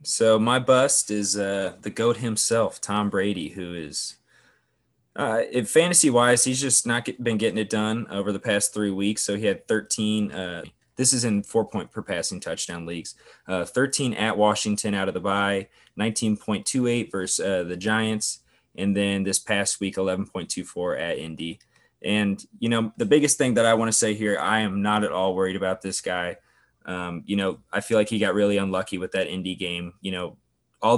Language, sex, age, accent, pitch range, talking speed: English, male, 20-39, American, 95-110 Hz, 185 wpm